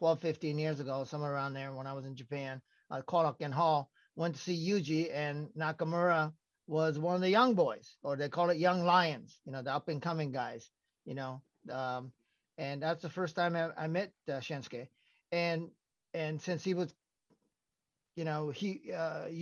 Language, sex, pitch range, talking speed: English, male, 155-205 Hz, 190 wpm